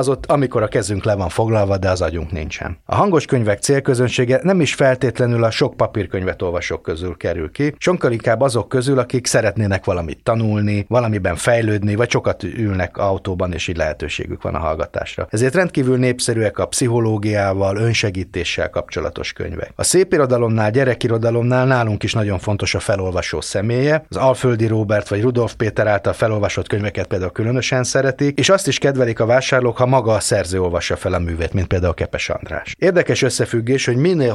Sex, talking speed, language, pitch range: male, 170 wpm, Hungarian, 95-130 Hz